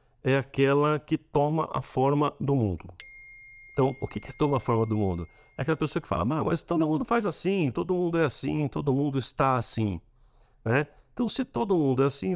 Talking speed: 205 wpm